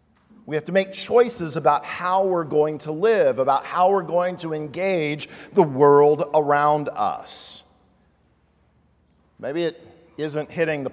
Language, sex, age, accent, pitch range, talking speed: English, male, 50-69, American, 145-225 Hz, 145 wpm